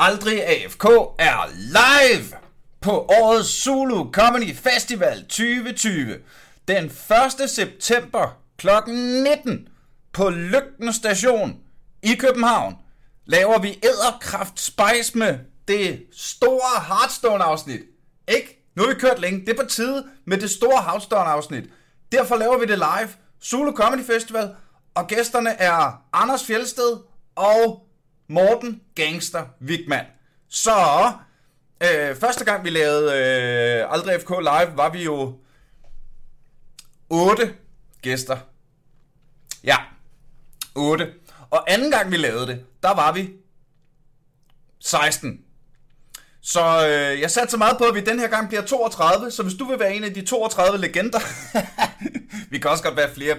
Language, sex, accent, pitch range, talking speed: Danish, male, native, 150-240 Hz, 125 wpm